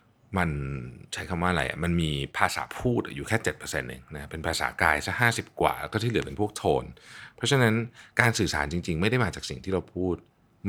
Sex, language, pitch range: male, Thai, 85-120 Hz